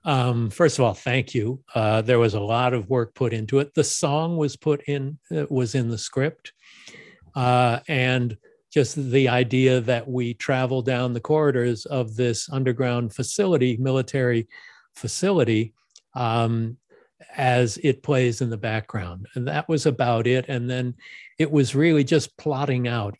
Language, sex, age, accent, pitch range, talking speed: English, male, 50-69, American, 115-135 Hz, 165 wpm